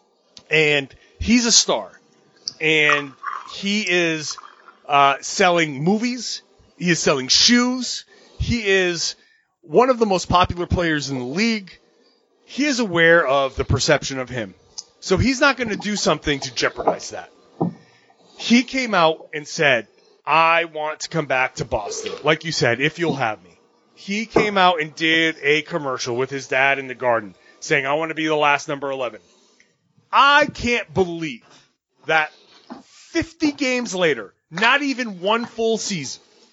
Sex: male